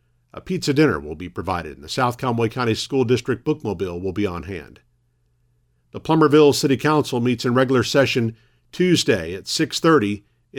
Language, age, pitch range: English, 50-69, 110-145 Hz